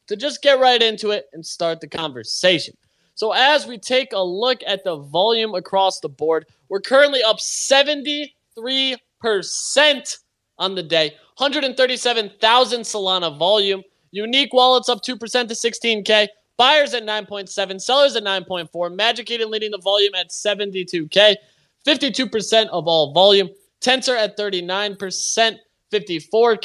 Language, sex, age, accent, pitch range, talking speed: English, male, 20-39, American, 200-255 Hz, 130 wpm